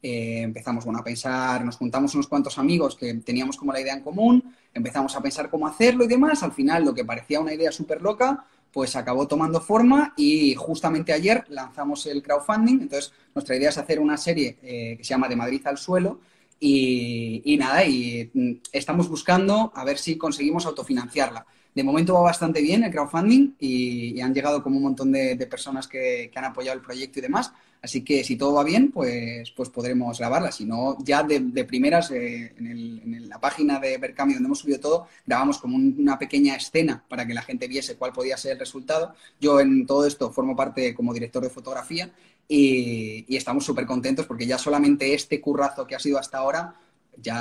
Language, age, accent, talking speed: Spanish, 20-39, Spanish, 210 wpm